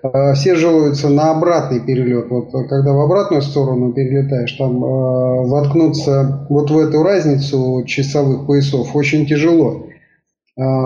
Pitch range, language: 135-160 Hz, Russian